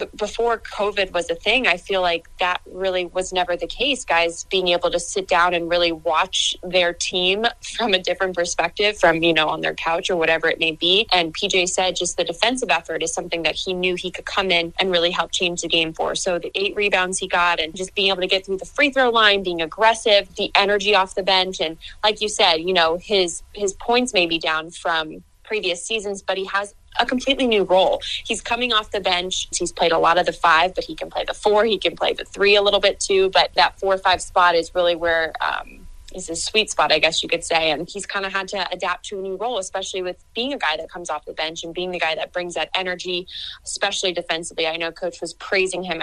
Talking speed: 250 wpm